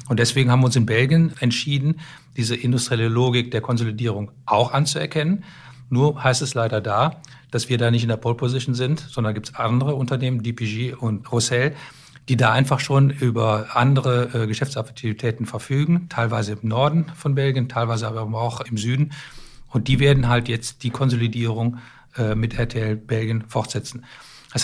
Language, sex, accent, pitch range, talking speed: German, male, German, 115-140 Hz, 170 wpm